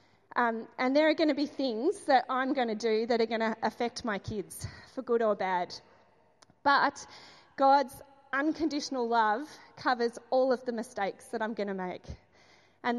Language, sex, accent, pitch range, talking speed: English, female, Australian, 215-265 Hz, 180 wpm